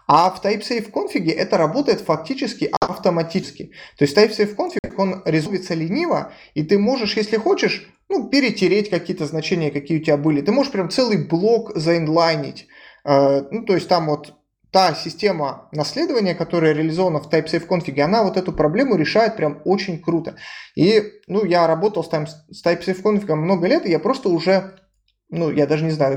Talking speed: 170 wpm